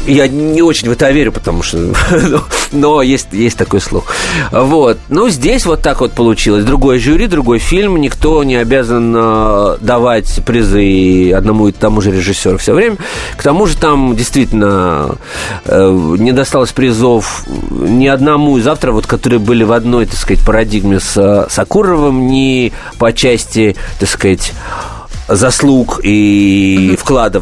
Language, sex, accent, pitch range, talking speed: Russian, male, native, 100-130 Hz, 150 wpm